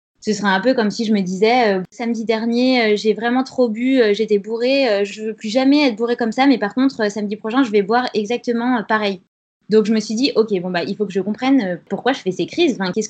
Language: French